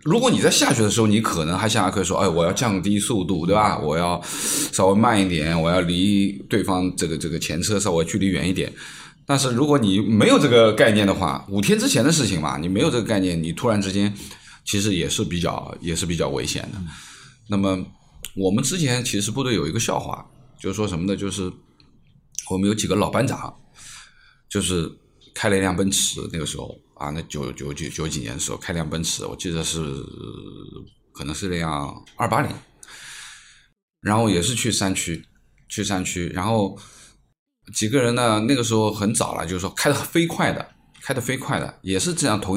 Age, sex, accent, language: 20-39, male, native, Chinese